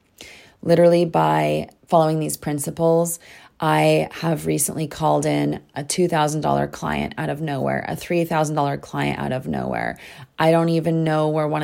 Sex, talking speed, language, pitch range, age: female, 145 wpm, English, 150-170 Hz, 30-49